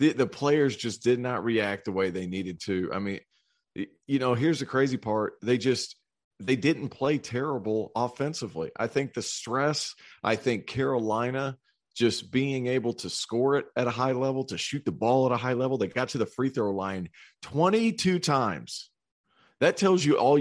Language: English